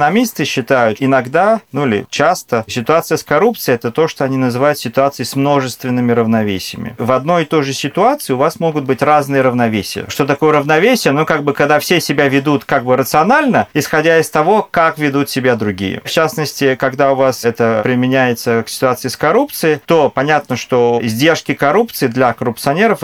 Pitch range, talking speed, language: 125-160 Hz, 175 wpm, Russian